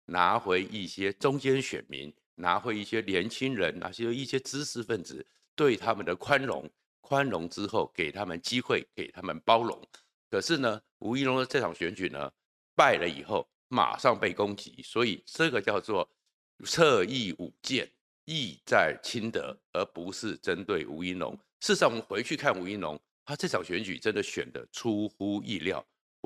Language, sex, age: Chinese, male, 50-69